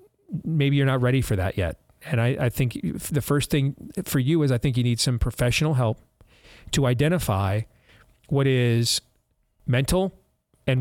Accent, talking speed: American, 165 wpm